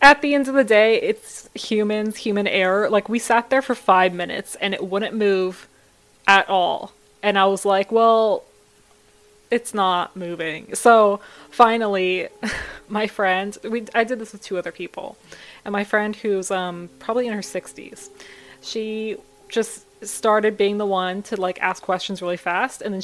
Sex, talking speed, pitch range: female, 170 wpm, 185-220 Hz